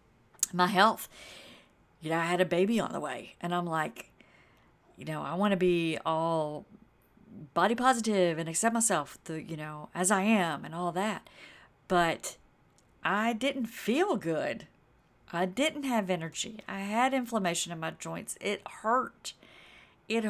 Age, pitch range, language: 50-69, 175-225 Hz, English